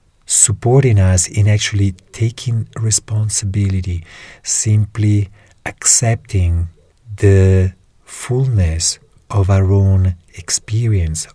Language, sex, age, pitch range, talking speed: English, male, 40-59, 90-100 Hz, 75 wpm